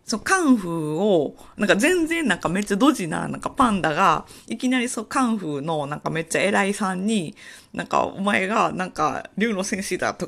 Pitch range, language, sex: 150-225 Hz, Japanese, female